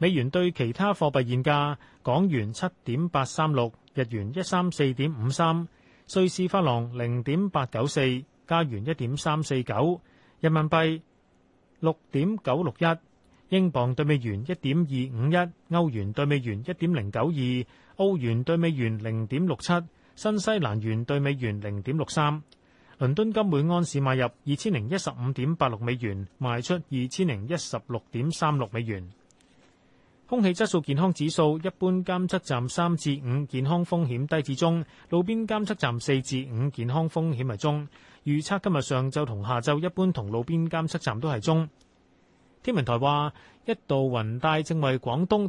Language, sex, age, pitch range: Chinese, male, 30-49, 125-170 Hz